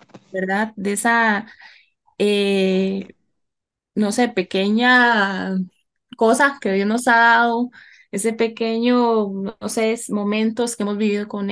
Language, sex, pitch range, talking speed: Spanish, female, 200-245 Hz, 115 wpm